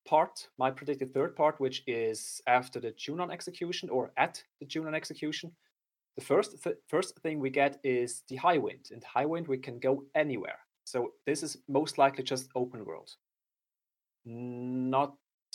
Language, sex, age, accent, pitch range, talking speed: English, male, 30-49, German, 125-155 Hz, 165 wpm